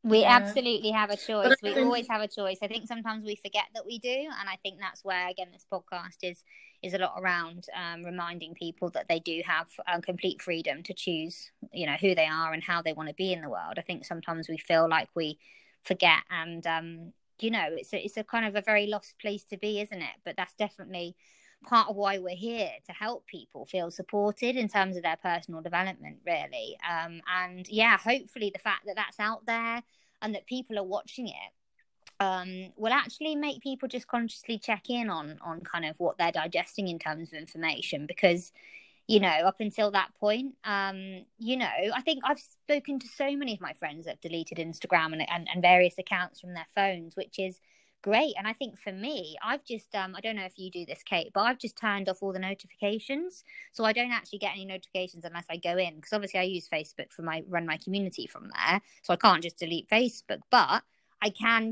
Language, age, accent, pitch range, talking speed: English, 20-39, British, 175-225 Hz, 225 wpm